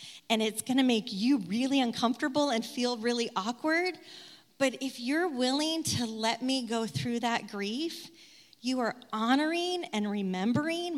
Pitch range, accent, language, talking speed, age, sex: 205-265 Hz, American, English, 155 wpm, 30-49, female